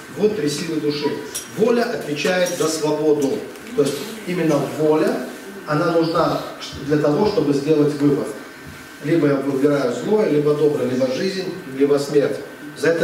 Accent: native